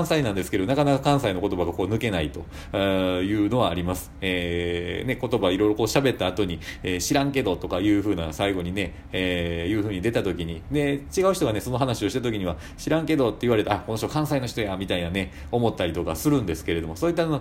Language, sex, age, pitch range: Japanese, male, 40-59, 95-140 Hz